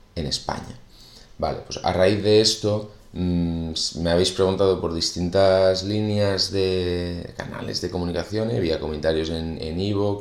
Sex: male